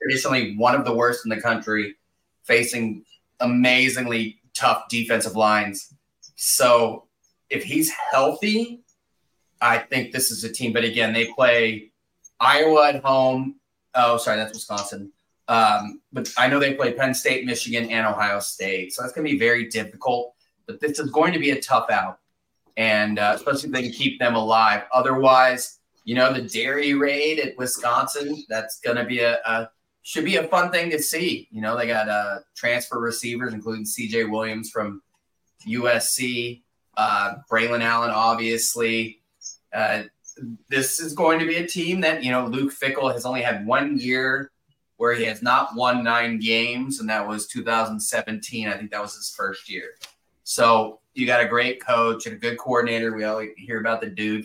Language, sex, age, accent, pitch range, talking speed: English, male, 30-49, American, 110-130 Hz, 175 wpm